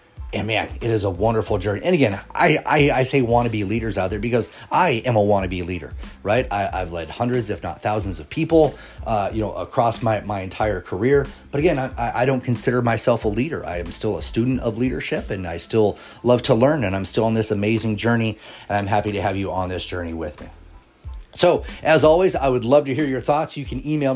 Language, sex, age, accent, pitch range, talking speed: English, male, 30-49, American, 105-135 Hz, 235 wpm